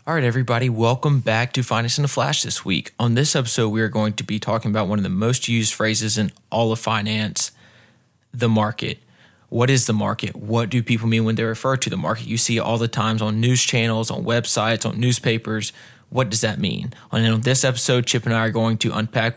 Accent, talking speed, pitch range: American, 230 wpm, 110-130 Hz